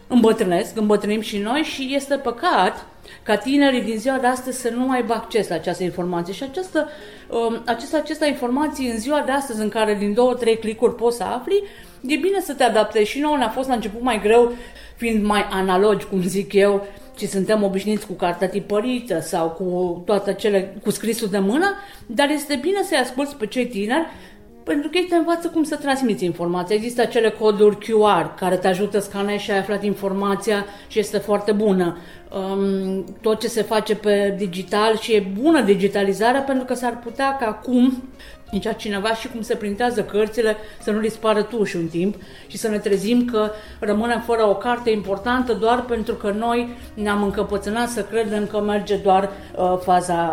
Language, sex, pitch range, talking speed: Romanian, female, 200-245 Hz, 190 wpm